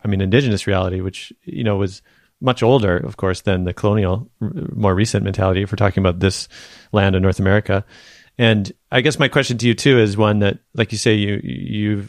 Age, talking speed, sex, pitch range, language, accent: 30-49, 205 wpm, male, 100-115 Hz, English, American